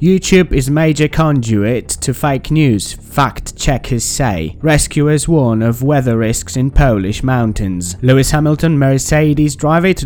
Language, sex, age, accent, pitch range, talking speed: Polish, male, 20-39, British, 110-145 Hz, 135 wpm